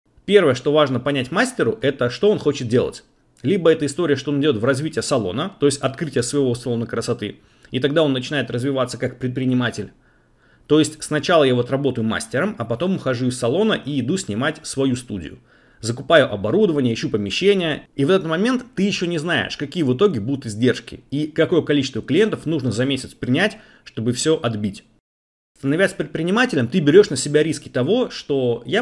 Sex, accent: male, native